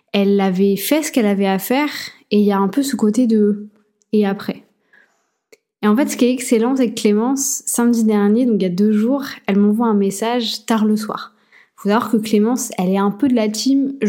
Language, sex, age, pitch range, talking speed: French, female, 20-39, 200-240 Hz, 250 wpm